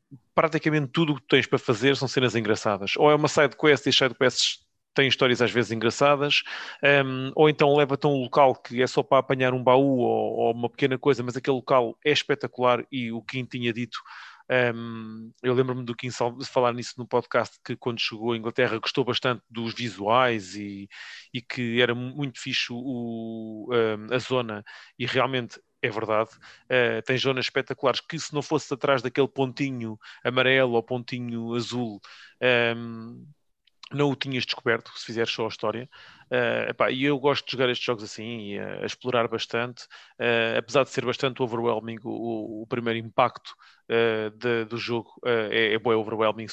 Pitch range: 115-135 Hz